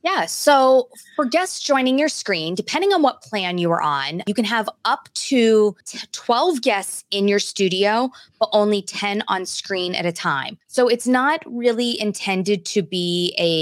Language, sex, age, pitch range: English, female, 20-39, 170-220 Hz